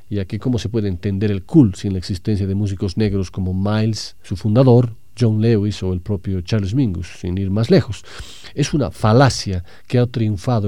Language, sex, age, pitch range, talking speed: Spanish, male, 40-59, 100-125 Hz, 195 wpm